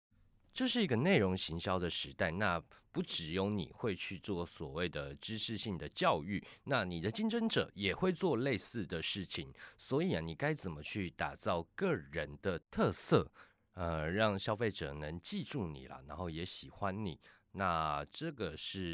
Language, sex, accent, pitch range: Chinese, male, native, 80-110 Hz